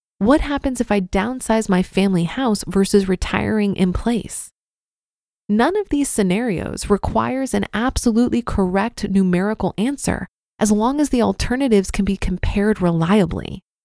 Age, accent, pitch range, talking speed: 20-39, American, 190-245 Hz, 135 wpm